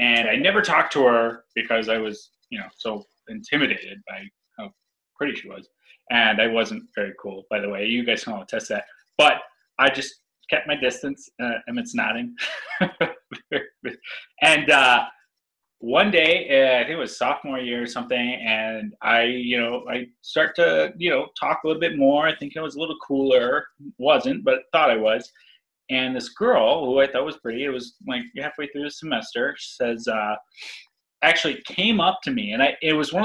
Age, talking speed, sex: 20-39, 195 wpm, male